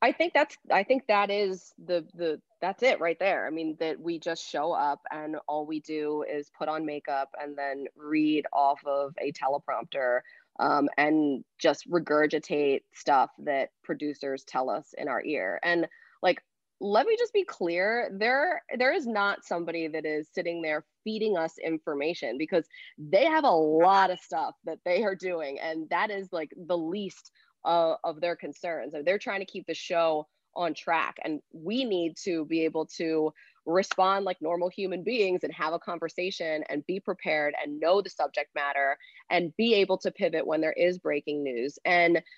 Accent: American